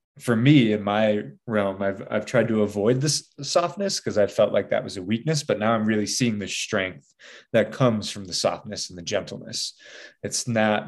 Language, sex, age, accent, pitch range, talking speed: English, male, 20-39, American, 100-120 Hz, 205 wpm